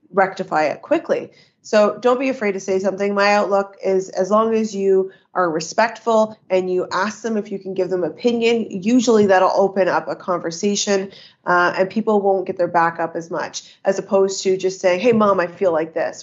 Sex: female